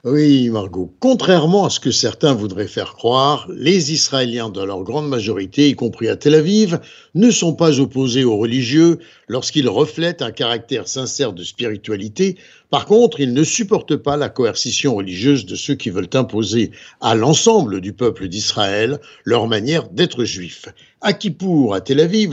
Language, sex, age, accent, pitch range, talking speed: French, male, 60-79, French, 120-170 Hz, 165 wpm